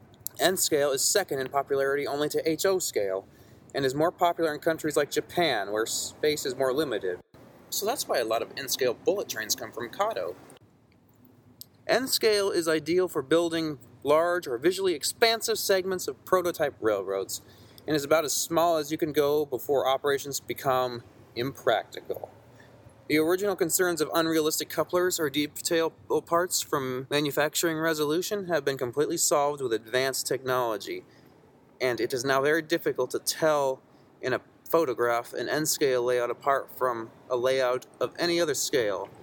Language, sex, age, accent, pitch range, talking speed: English, male, 30-49, American, 130-175 Hz, 155 wpm